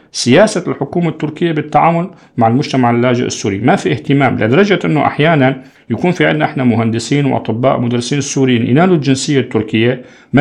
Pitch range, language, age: 125-165 Hz, Arabic, 40-59